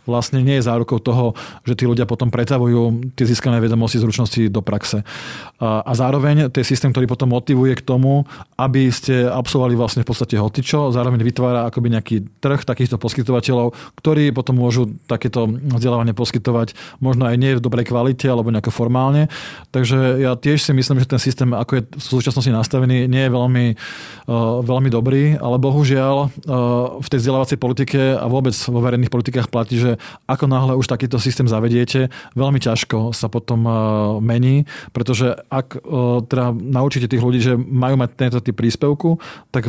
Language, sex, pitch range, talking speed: Slovak, male, 120-130 Hz, 165 wpm